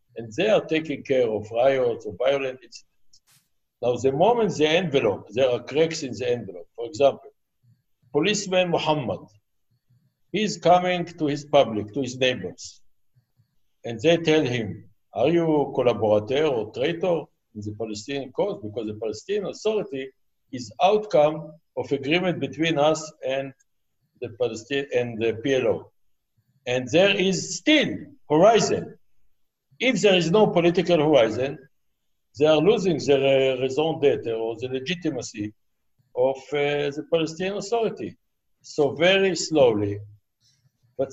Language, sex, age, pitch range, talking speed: English, male, 60-79, 120-170 Hz, 130 wpm